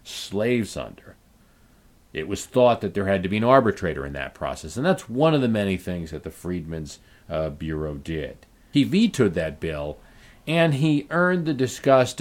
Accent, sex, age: American, male, 50-69